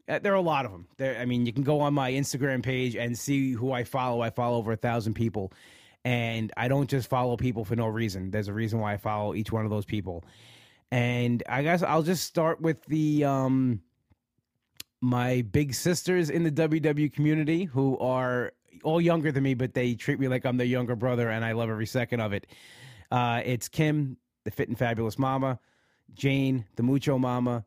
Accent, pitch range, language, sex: American, 115-145 Hz, English, male